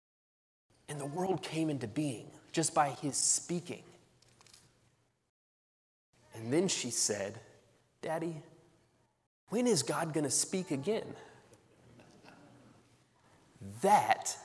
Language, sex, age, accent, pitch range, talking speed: English, male, 30-49, American, 135-190 Hz, 95 wpm